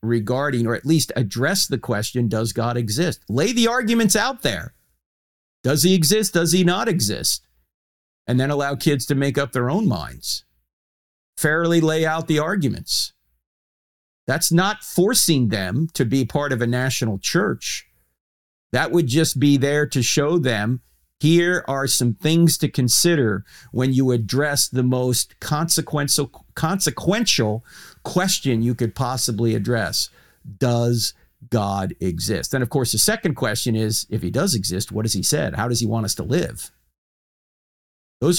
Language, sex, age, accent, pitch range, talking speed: English, male, 50-69, American, 105-150 Hz, 155 wpm